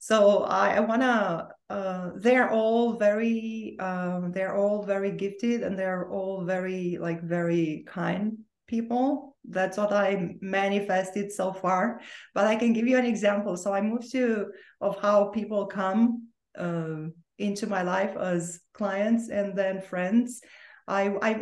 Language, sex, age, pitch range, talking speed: English, female, 20-39, 180-220 Hz, 145 wpm